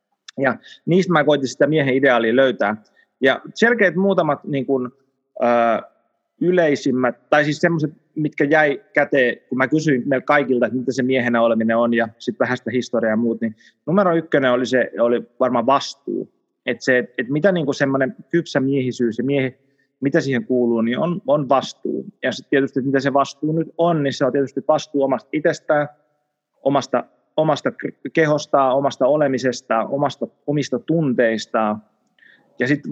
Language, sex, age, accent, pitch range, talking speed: Finnish, male, 30-49, native, 120-150 Hz, 160 wpm